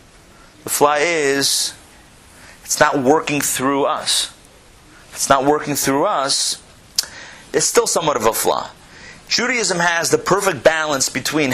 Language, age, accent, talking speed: English, 30-49, American, 130 wpm